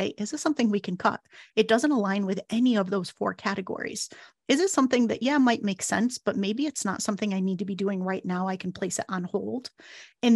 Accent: American